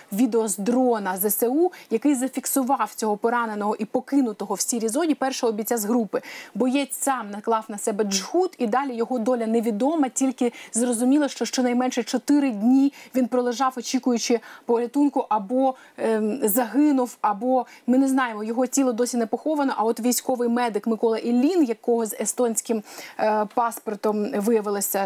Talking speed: 150 wpm